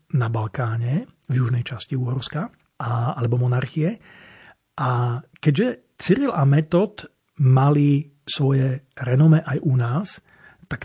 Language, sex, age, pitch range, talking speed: Slovak, male, 40-59, 125-155 Hz, 110 wpm